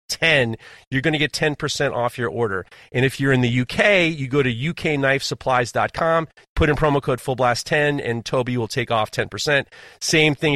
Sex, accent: male, American